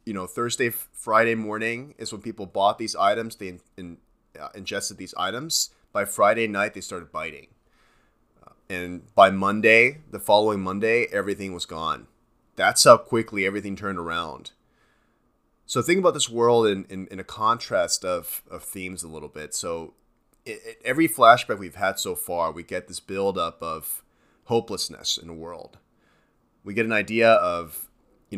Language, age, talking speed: English, 30-49, 160 wpm